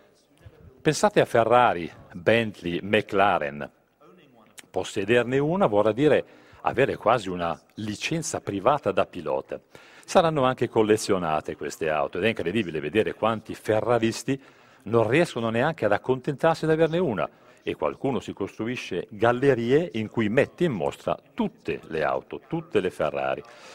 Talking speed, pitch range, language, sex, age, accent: 130 wpm, 100-140 Hz, Italian, male, 50-69, native